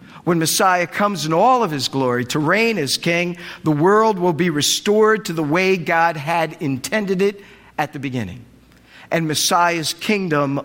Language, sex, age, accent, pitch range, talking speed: English, male, 50-69, American, 150-195 Hz, 170 wpm